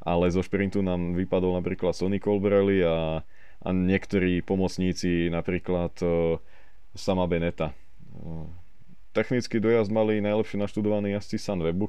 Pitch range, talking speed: 85-100 Hz, 115 wpm